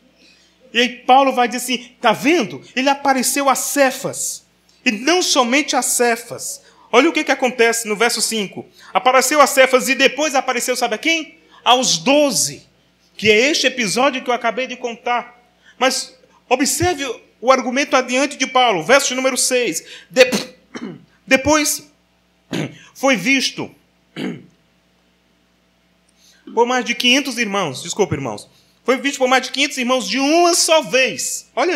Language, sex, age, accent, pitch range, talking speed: Portuguese, male, 30-49, Brazilian, 210-275 Hz, 145 wpm